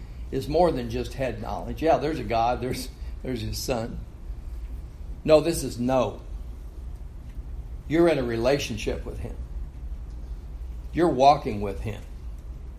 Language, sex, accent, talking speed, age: English, male, American, 130 wpm, 60-79